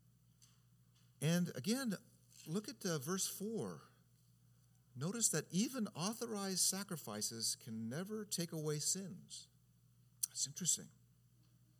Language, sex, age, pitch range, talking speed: English, male, 50-69, 115-170 Hz, 90 wpm